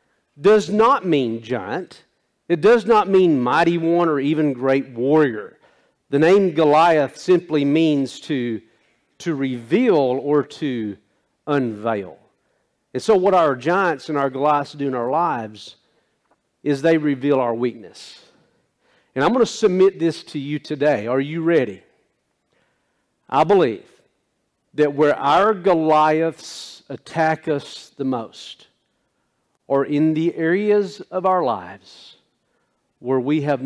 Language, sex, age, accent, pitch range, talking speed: English, male, 50-69, American, 130-165 Hz, 130 wpm